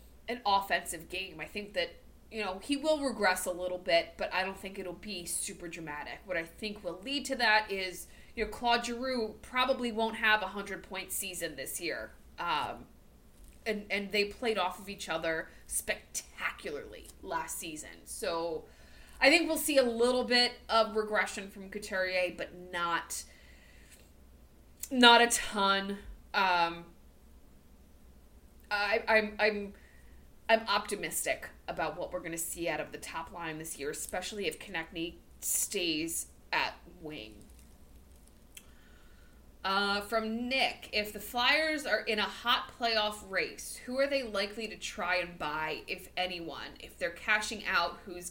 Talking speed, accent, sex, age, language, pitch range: 155 wpm, American, female, 20-39, English, 165-220 Hz